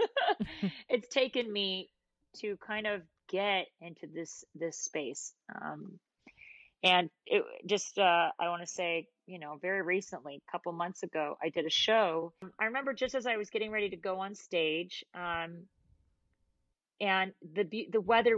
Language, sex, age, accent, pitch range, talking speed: English, female, 30-49, American, 185-245 Hz, 160 wpm